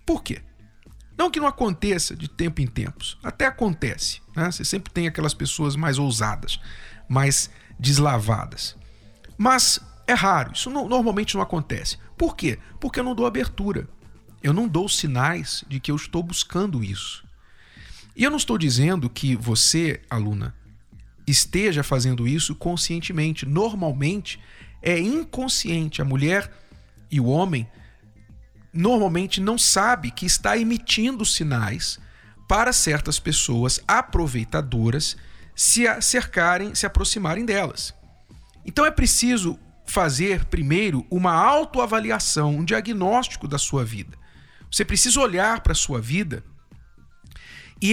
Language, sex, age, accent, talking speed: Portuguese, male, 50-69, Brazilian, 130 wpm